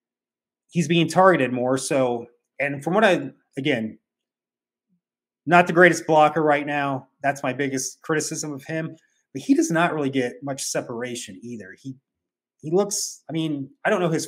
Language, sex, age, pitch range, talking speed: English, male, 30-49, 130-170 Hz, 170 wpm